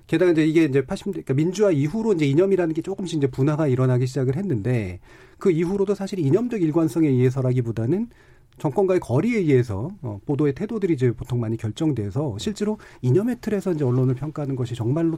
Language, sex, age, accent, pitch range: Korean, male, 40-59, native, 125-175 Hz